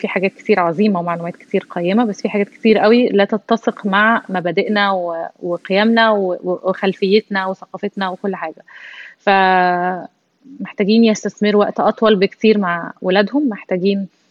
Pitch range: 185-220 Hz